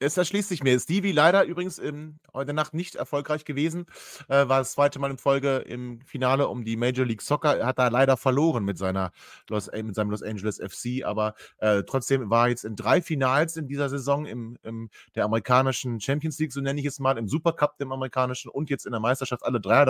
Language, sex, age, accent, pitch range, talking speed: German, male, 30-49, German, 115-145 Hz, 225 wpm